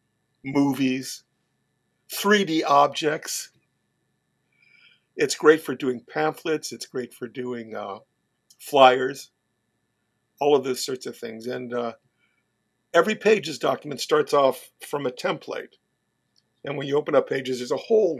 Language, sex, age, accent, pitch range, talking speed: English, male, 50-69, American, 125-155 Hz, 130 wpm